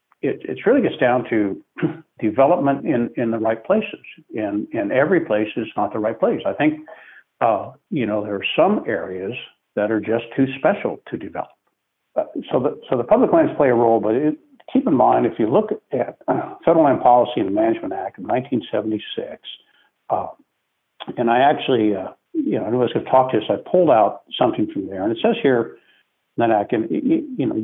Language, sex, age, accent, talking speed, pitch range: English, male, 60-79, American, 200 wpm, 105-155 Hz